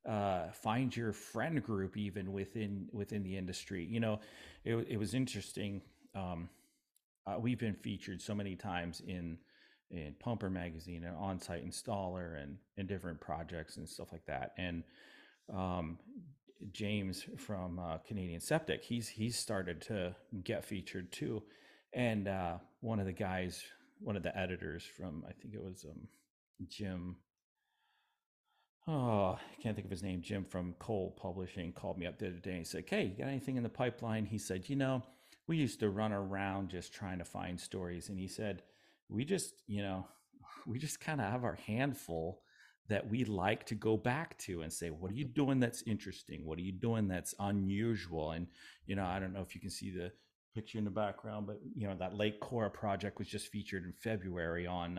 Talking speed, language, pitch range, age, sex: 190 wpm, English, 90-110 Hz, 30-49, male